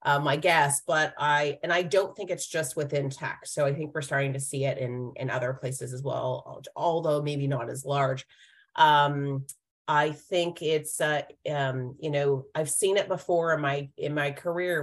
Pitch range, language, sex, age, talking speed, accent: 135-160 Hz, English, female, 30-49, 200 wpm, American